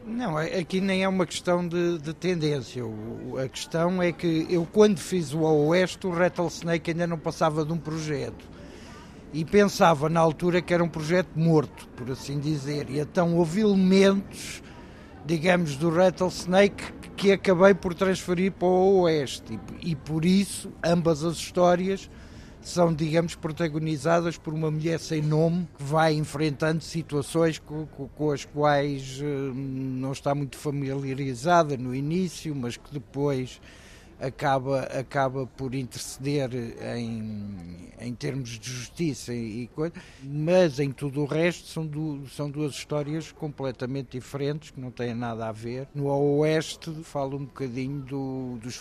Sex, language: male, Portuguese